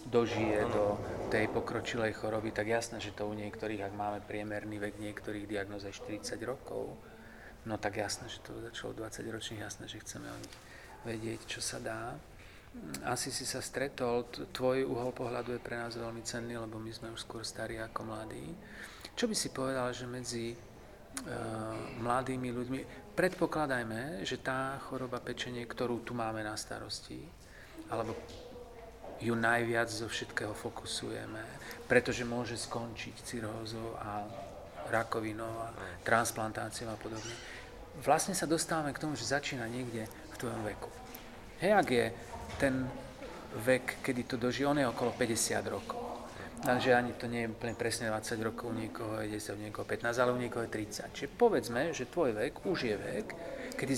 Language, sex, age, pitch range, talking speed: Slovak, male, 40-59, 110-125 Hz, 160 wpm